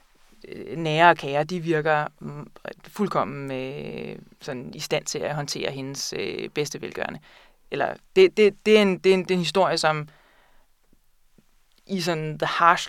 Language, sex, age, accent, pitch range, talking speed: Danish, female, 20-39, native, 150-185 Hz, 165 wpm